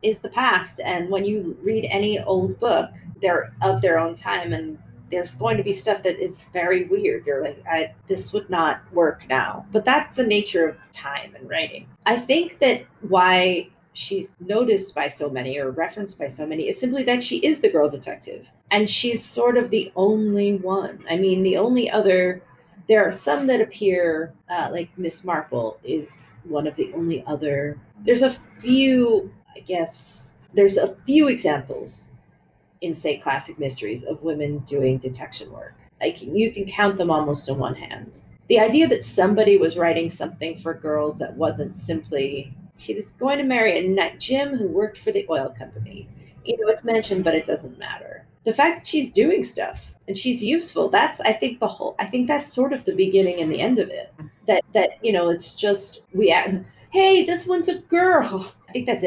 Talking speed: 195 wpm